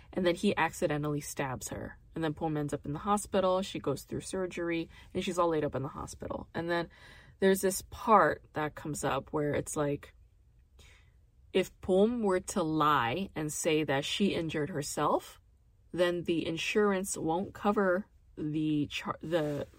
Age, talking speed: 20-39, 165 wpm